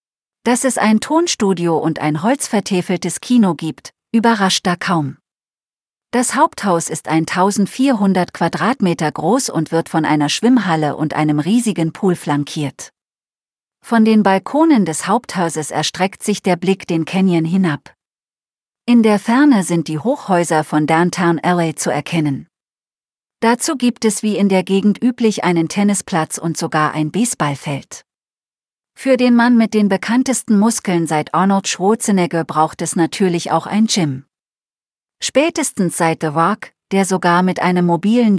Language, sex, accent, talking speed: German, female, German, 140 wpm